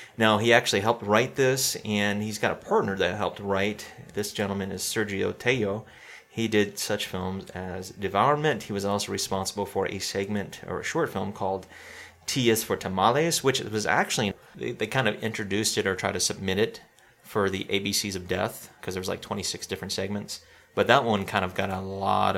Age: 30-49